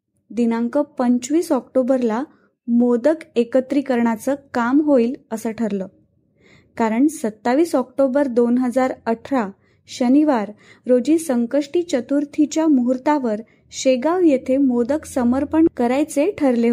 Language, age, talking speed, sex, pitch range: Marathi, 20-39, 95 wpm, female, 230-285 Hz